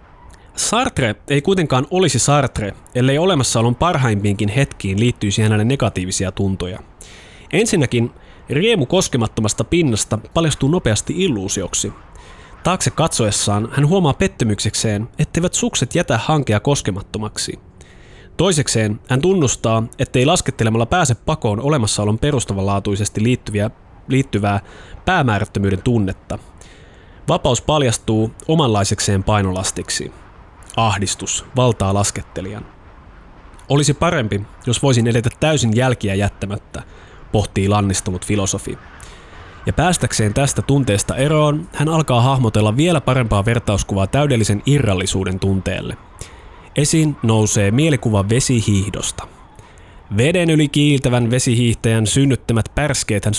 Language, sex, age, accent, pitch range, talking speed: Finnish, male, 20-39, native, 100-140 Hz, 95 wpm